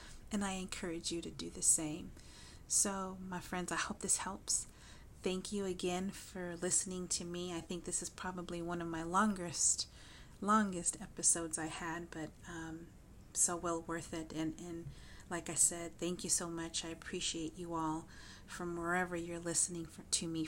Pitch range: 155-175 Hz